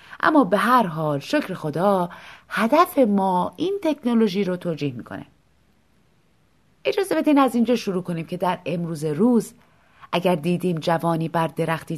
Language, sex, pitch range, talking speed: Persian, female, 160-255 Hz, 140 wpm